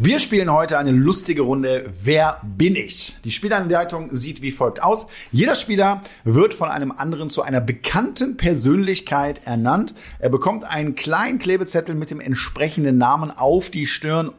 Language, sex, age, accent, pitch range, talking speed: German, male, 50-69, German, 115-170 Hz, 160 wpm